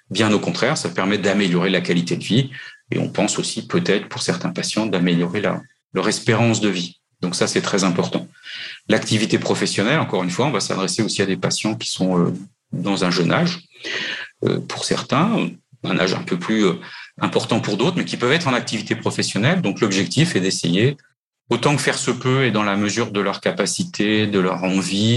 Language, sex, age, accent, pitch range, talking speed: French, male, 40-59, French, 90-115 Hz, 195 wpm